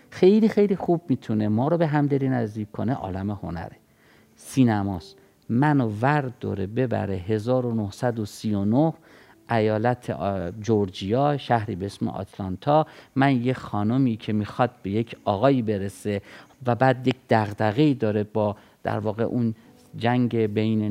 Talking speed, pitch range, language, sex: 125 wpm, 110-140 Hz, Persian, male